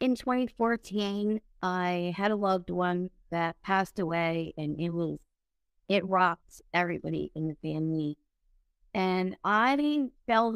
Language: English